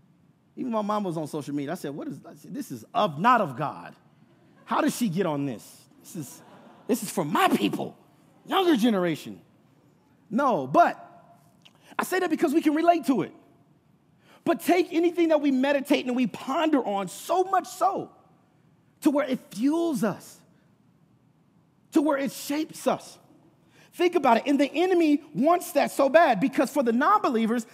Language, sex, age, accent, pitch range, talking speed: English, male, 30-49, American, 210-300 Hz, 175 wpm